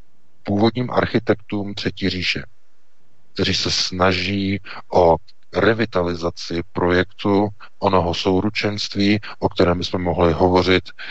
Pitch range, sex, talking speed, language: 85-95 Hz, male, 90 wpm, Czech